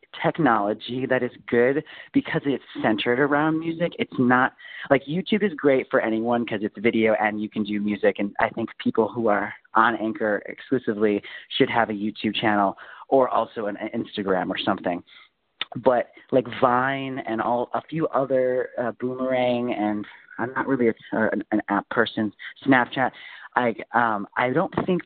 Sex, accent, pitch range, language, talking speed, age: male, American, 110-145 Hz, English, 170 wpm, 30-49